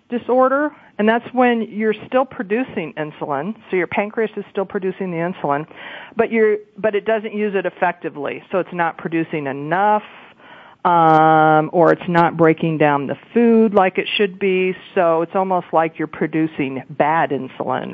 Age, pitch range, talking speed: 40-59, 165-210 Hz, 165 wpm